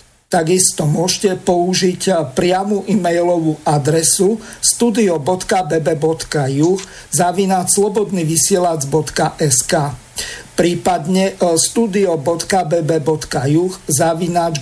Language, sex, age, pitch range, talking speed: Slovak, male, 50-69, 160-185 Hz, 50 wpm